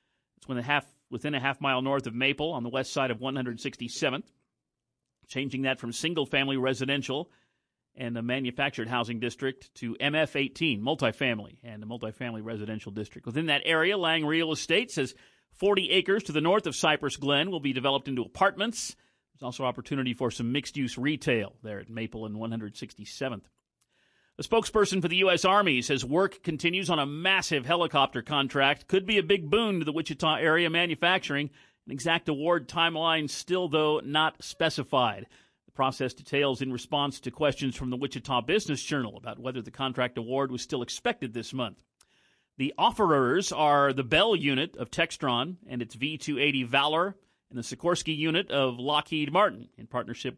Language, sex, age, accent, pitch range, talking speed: English, male, 50-69, American, 125-160 Hz, 165 wpm